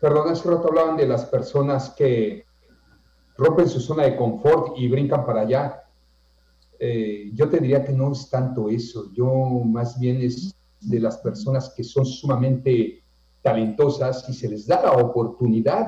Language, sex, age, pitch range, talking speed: Spanish, male, 50-69, 115-150 Hz, 165 wpm